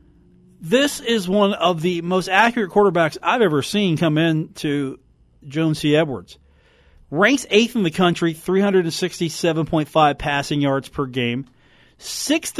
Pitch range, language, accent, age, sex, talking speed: 135-185 Hz, English, American, 40-59, male, 135 wpm